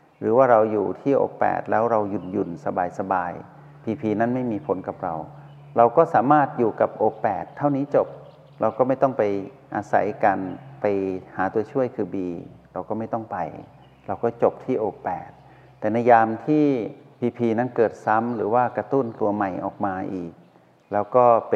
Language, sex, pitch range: Thai, male, 100-125 Hz